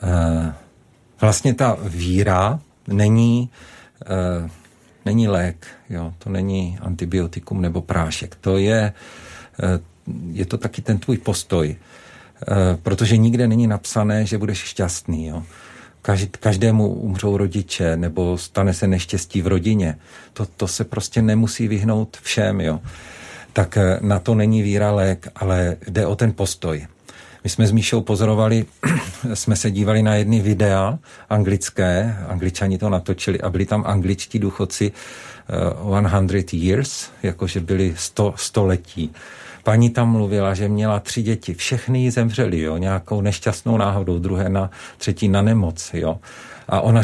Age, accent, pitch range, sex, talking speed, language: 50-69, native, 90-115 Hz, male, 130 wpm, Czech